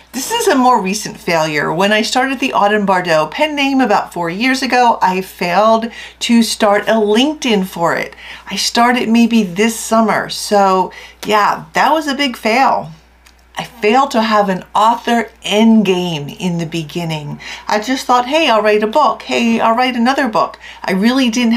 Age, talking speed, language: 40-59, 180 wpm, English